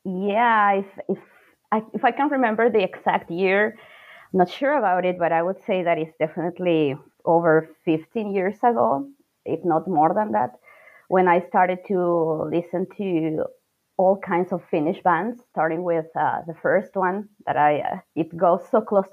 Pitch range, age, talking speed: 160-225 Hz, 20-39, 175 wpm